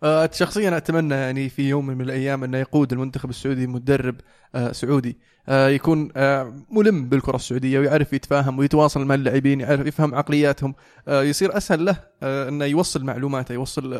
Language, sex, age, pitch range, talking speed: Arabic, male, 20-39, 130-145 Hz, 135 wpm